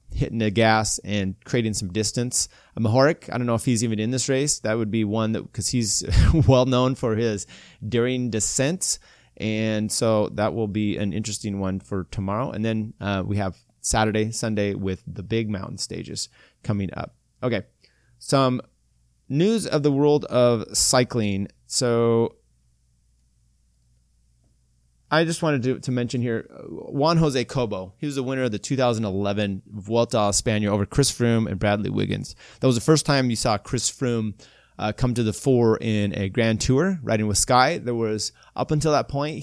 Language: English